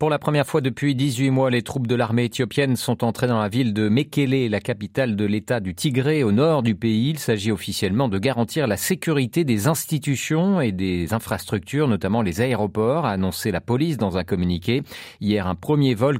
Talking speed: 205 wpm